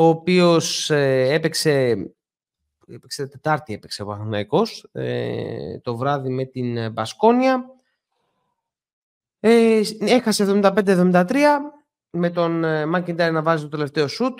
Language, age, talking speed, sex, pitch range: Greek, 30-49, 115 wpm, male, 140-185 Hz